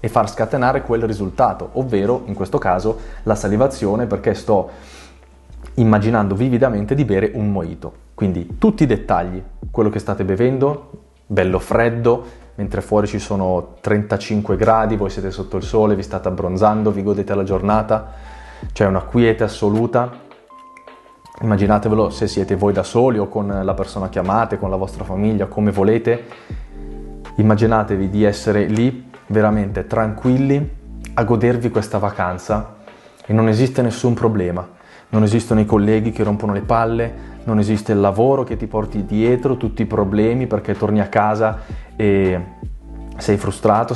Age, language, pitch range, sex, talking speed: 20-39, Italian, 100-115 Hz, male, 150 wpm